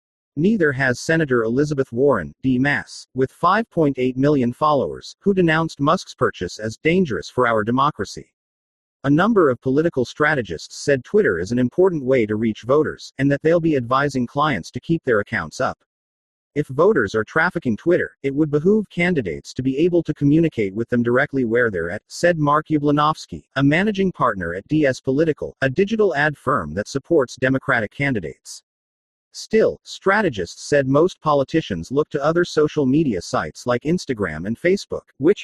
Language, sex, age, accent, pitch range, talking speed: English, male, 40-59, American, 120-155 Hz, 165 wpm